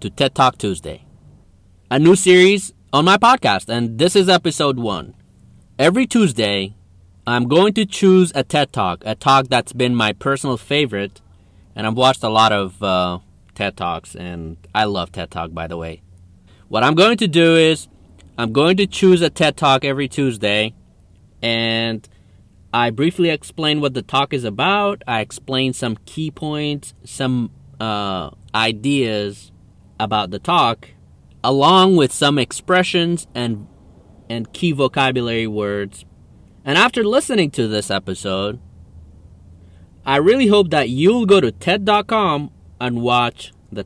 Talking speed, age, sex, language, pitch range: 150 wpm, 30-49, male, English, 95-145 Hz